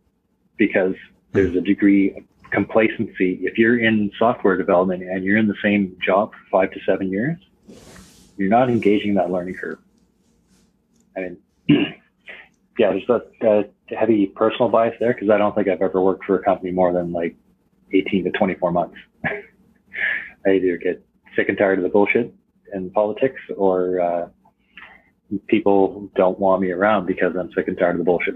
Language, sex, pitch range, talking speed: English, male, 90-105 Hz, 170 wpm